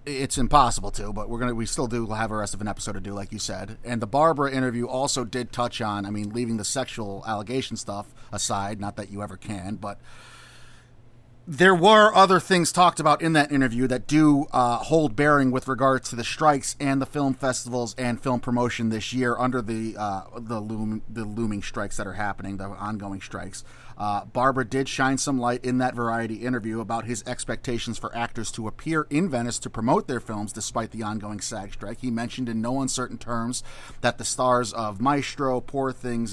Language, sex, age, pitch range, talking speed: English, male, 30-49, 110-130 Hz, 205 wpm